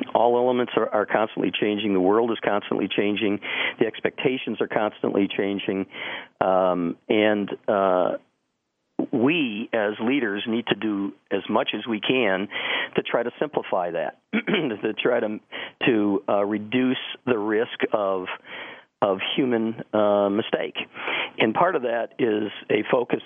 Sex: male